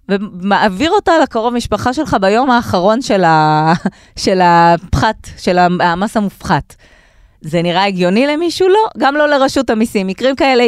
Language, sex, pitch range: Hebrew, female, 165-225 Hz